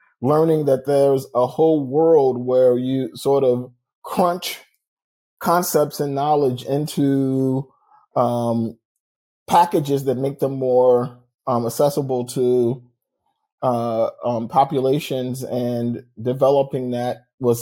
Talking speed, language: 105 wpm, English